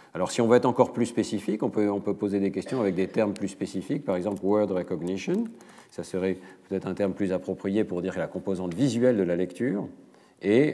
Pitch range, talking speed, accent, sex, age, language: 90-110 Hz, 210 wpm, French, male, 50-69, French